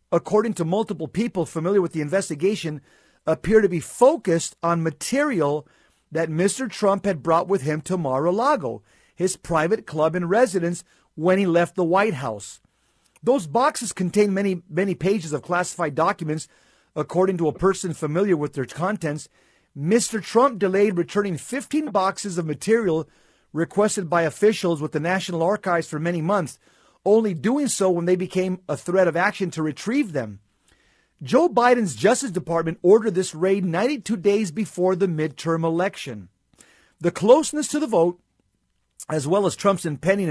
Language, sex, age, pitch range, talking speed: English, male, 50-69, 165-205 Hz, 155 wpm